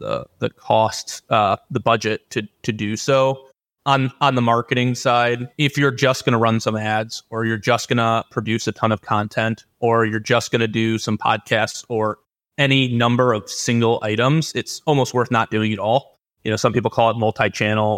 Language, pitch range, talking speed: English, 110-125 Hz, 205 wpm